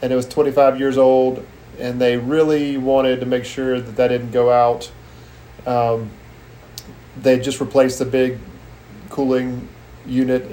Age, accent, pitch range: 40-59, American, 120-135 Hz